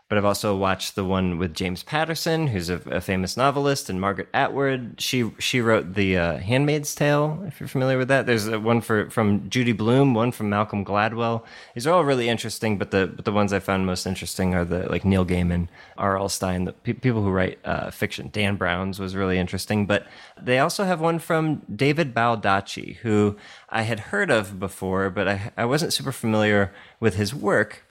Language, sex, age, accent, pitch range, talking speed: English, male, 20-39, American, 95-120 Hz, 200 wpm